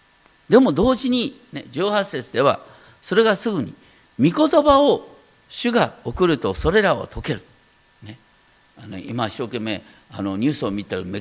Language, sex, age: Japanese, male, 50-69